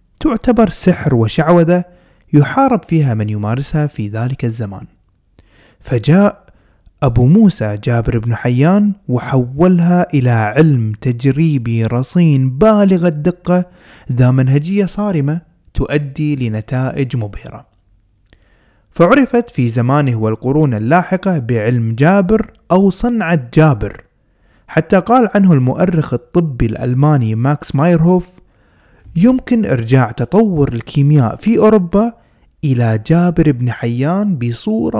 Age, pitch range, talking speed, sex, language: 30-49, 120-175 Hz, 100 wpm, male, Arabic